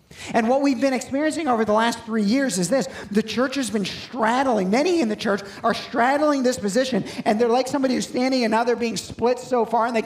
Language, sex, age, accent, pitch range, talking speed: English, male, 40-59, American, 175-240 Hz, 240 wpm